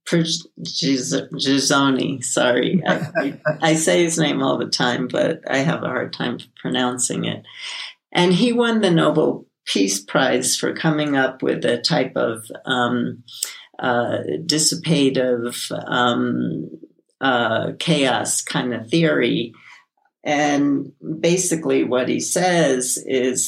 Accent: American